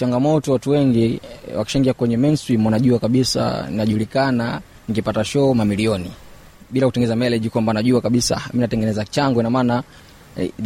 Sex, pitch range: male, 110-130 Hz